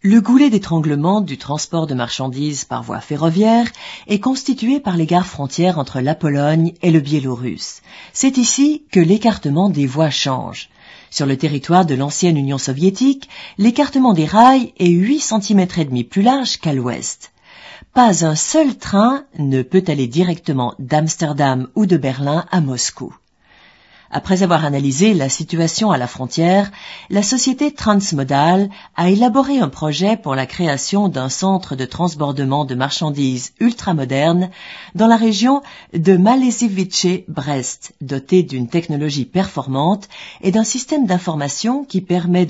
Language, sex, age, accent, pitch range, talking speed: French, female, 40-59, French, 145-205 Hz, 145 wpm